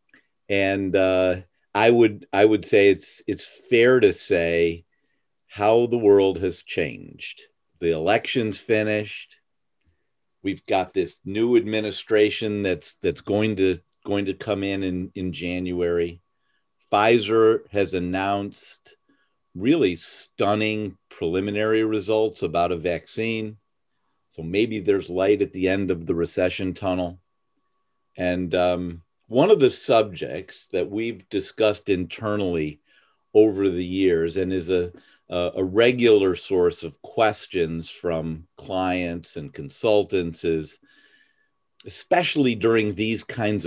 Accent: American